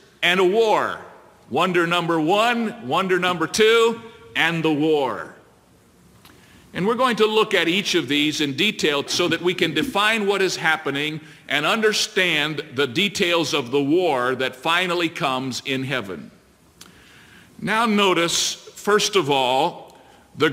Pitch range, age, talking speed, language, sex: 160-195 Hz, 50-69, 145 wpm, English, male